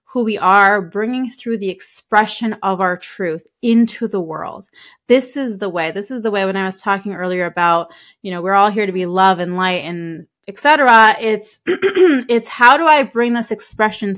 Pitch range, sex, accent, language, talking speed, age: 195-245 Hz, female, American, English, 205 wpm, 20-39